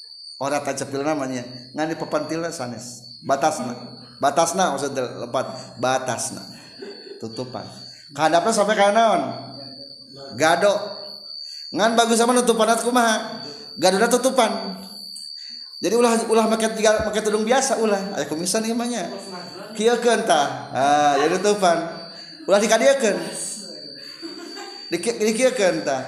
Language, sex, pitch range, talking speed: Indonesian, male, 150-220 Hz, 85 wpm